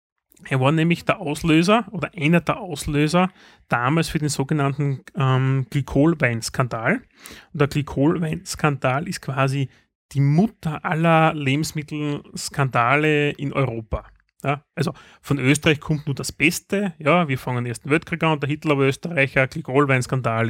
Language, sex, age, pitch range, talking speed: German, male, 30-49, 135-160 Hz, 130 wpm